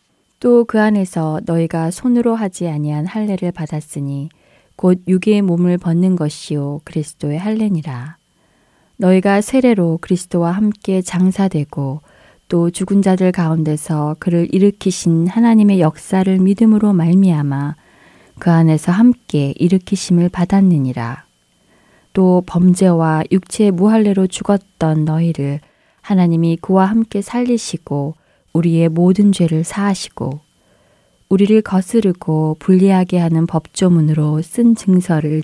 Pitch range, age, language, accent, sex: 160-195 Hz, 20-39, Korean, native, female